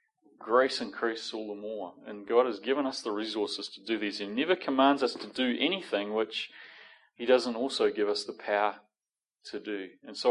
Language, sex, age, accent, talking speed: English, male, 30-49, Australian, 200 wpm